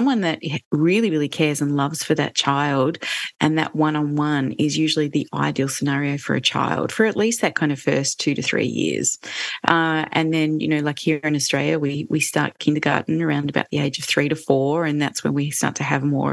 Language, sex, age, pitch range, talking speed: English, female, 30-49, 145-170 Hz, 225 wpm